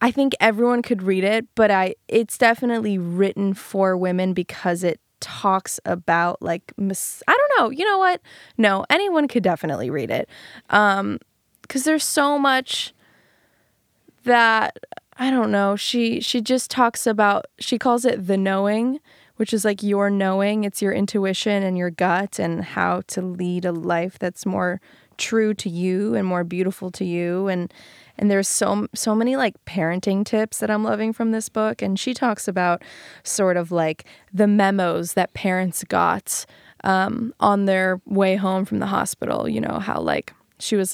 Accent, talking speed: American, 170 wpm